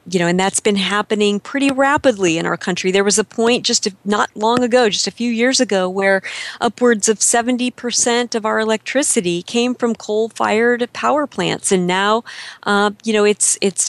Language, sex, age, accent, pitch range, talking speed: English, female, 40-59, American, 195-245 Hz, 185 wpm